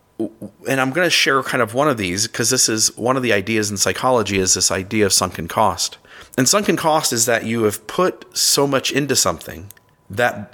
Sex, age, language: male, 30-49, English